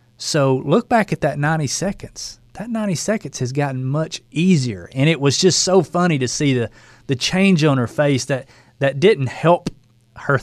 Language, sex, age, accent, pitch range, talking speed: English, male, 30-49, American, 115-145 Hz, 190 wpm